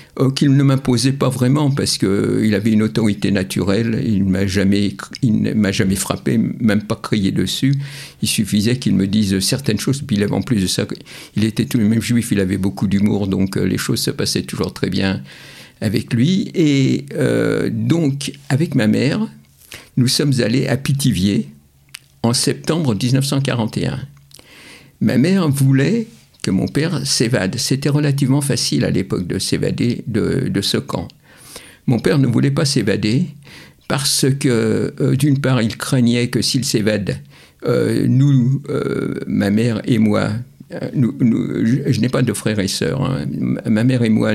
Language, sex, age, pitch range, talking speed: French, male, 50-69, 100-135 Hz, 175 wpm